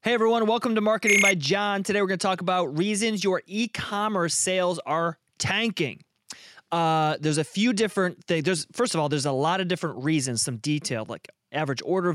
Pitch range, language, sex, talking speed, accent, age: 135-175 Hz, English, male, 200 wpm, American, 30-49